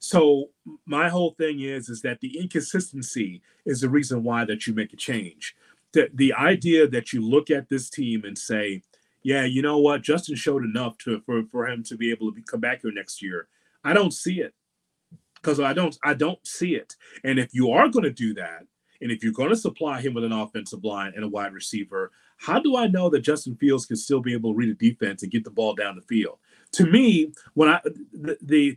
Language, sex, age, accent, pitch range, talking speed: English, male, 30-49, American, 130-195 Hz, 235 wpm